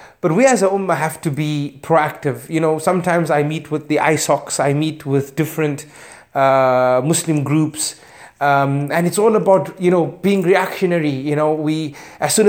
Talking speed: 185 wpm